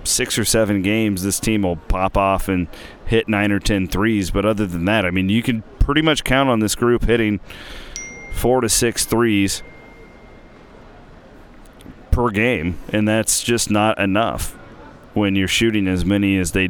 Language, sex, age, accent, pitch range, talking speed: English, male, 30-49, American, 95-110 Hz, 175 wpm